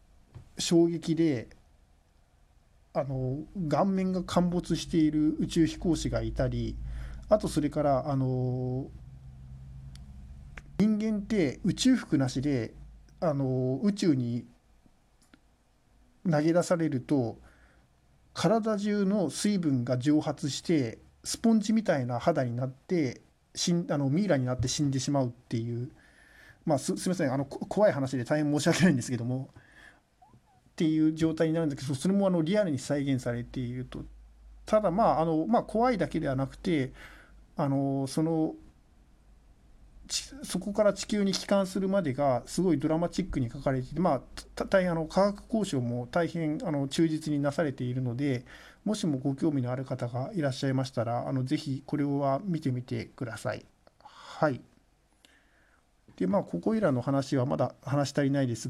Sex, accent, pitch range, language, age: male, native, 125-165 Hz, Japanese, 50-69